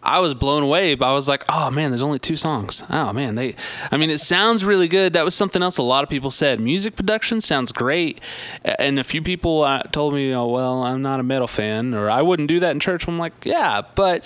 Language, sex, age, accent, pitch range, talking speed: English, male, 20-39, American, 115-145 Hz, 255 wpm